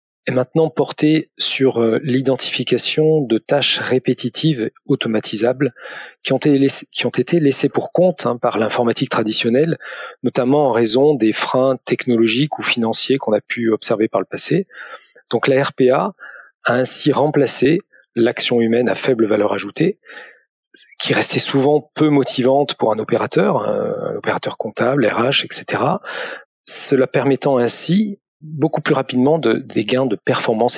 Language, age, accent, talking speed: French, 40-59, French, 135 wpm